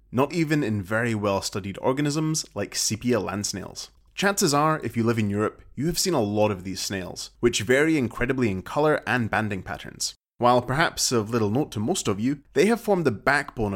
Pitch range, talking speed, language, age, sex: 105-150 Hz, 205 wpm, English, 30-49, male